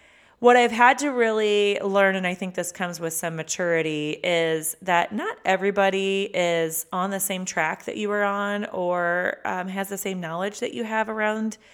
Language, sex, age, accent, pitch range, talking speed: English, female, 30-49, American, 165-210 Hz, 190 wpm